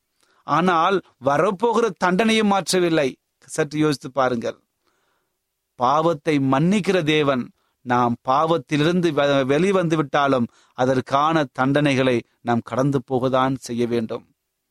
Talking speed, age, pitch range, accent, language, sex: 85 wpm, 30-49, 130-165 Hz, native, Tamil, male